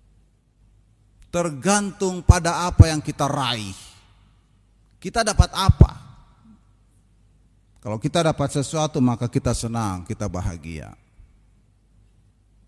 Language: Indonesian